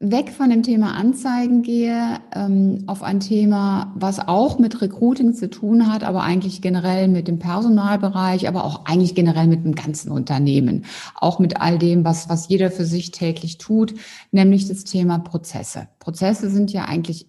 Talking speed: 170 wpm